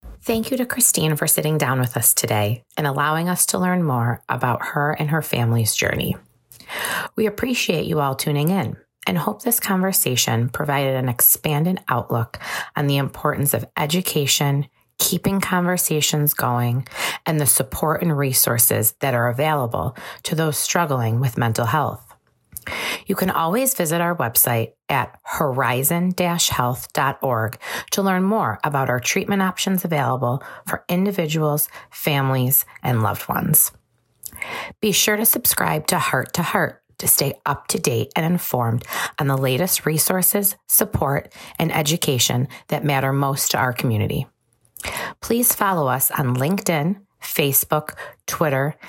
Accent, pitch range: American, 125-175 Hz